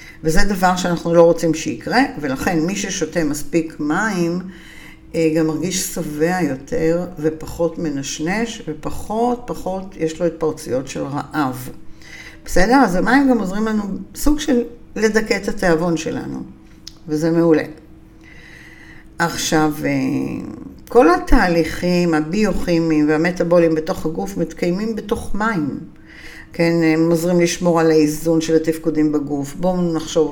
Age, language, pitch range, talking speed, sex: 50-69, Hebrew, 160-215 Hz, 115 wpm, female